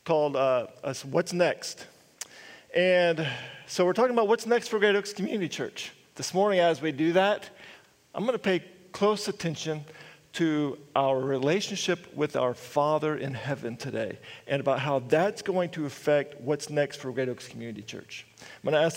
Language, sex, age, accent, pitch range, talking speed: English, male, 40-59, American, 145-195 Hz, 175 wpm